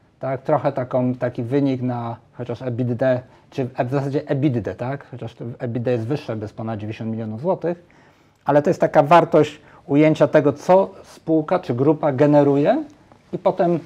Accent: native